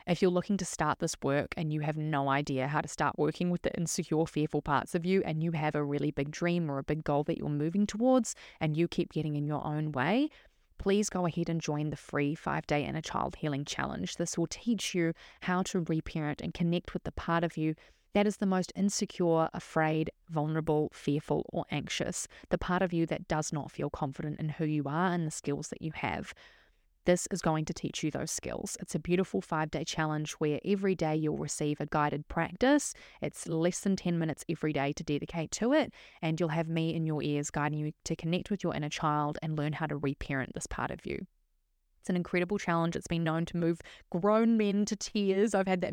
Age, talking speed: 20-39, 225 wpm